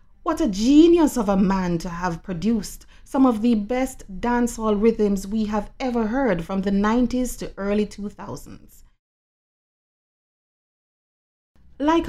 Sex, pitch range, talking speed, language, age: female, 180-255 Hz, 130 wpm, English, 30-49